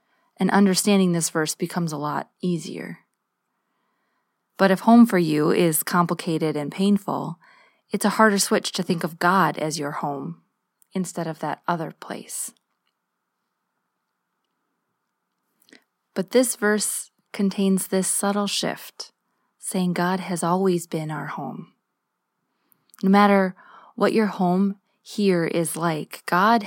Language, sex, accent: English, female, American